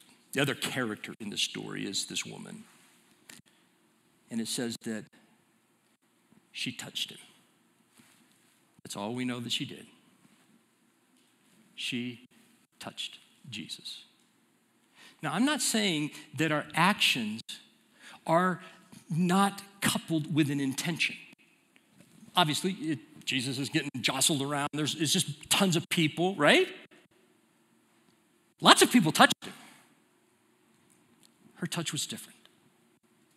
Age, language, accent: 50-69, English, American